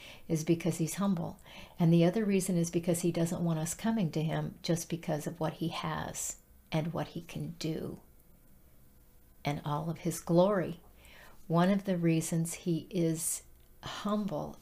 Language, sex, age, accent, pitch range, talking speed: English, female, 50-69, American, 160-185 Hz, 165 wpm